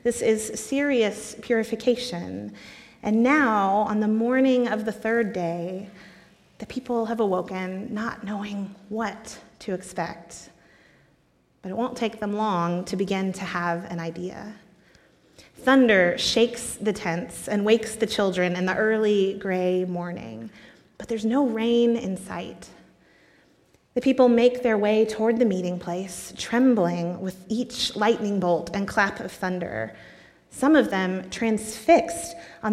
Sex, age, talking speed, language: female, 30-49, 140 wpm, English